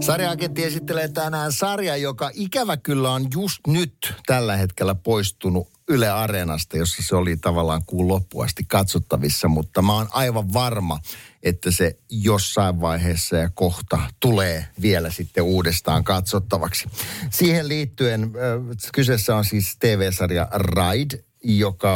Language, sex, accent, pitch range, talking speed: Finnish, male, native, 90-120 Hz, 125 wpm